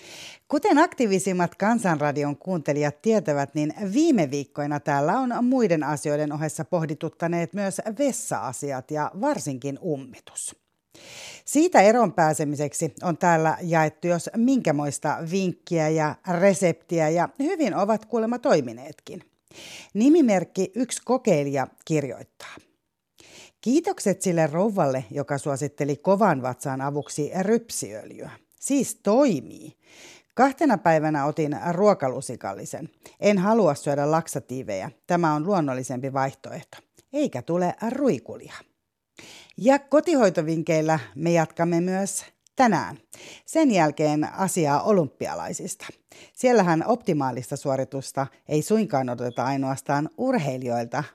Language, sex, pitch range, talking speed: Finnish, female, 145-205 Hz, 95 wpm